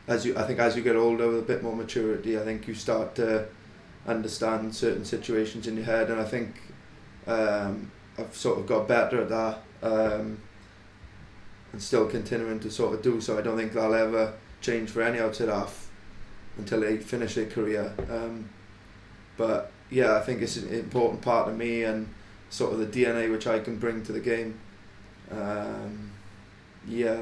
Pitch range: 105-115 Hz